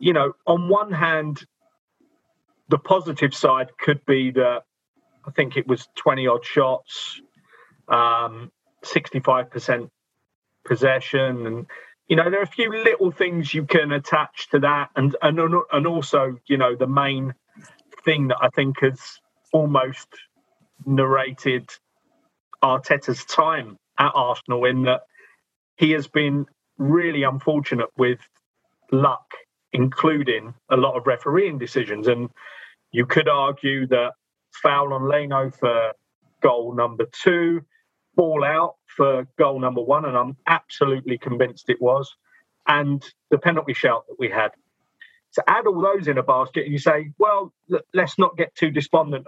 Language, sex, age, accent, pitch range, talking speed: English, male, 30-49, British, 130-160 Hz, 140 wpm